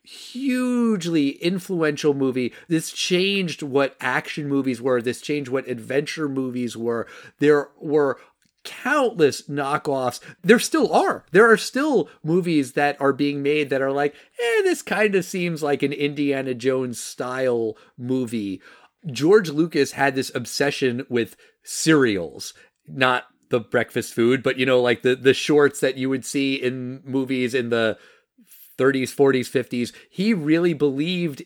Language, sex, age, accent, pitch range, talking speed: English, male, 30-49, American, 125-170 Hz, 145 wpm